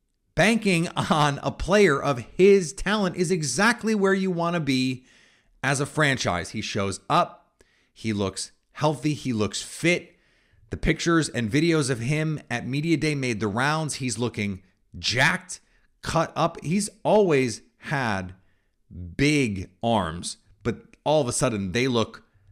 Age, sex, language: 30-49, male, English